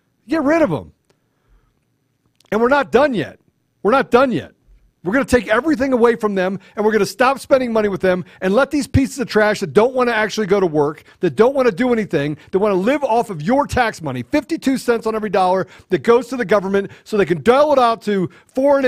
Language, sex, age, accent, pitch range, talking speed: English, male, 50-69, American, 185-265 Hz, 245 wpm